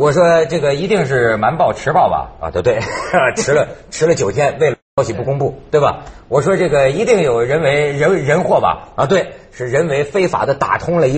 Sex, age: male, 50-69